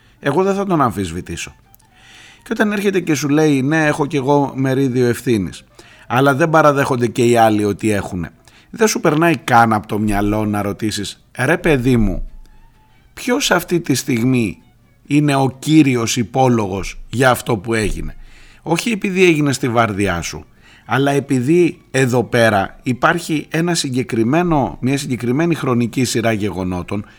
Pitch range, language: 110-150 Hz, Greek